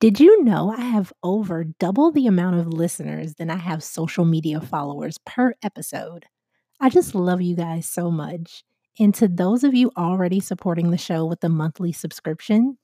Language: English